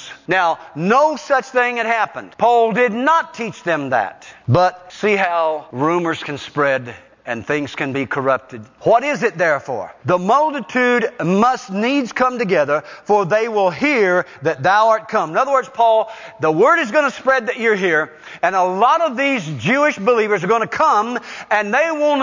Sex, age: male, 50-69